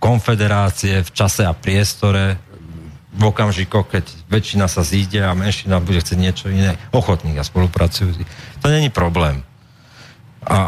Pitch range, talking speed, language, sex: 90-130 Hz, 140 wpm, Slovak, male